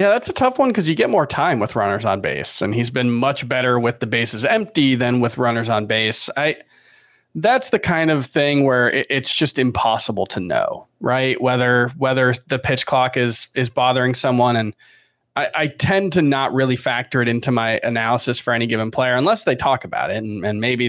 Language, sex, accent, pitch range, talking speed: English, male, American, 115-150 Hz, 215 wpm